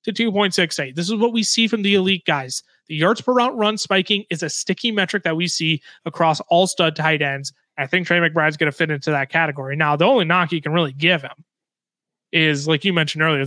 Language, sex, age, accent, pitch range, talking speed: English, male, 30-49, American, 160-205 Hz, 235 wpm